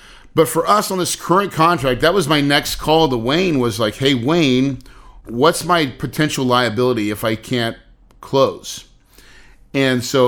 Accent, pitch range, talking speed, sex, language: American, 110-140 Hz, 165 wpm, male, English